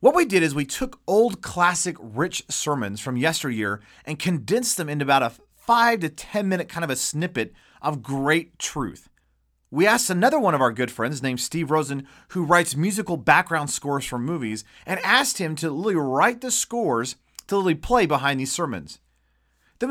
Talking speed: 185 wpm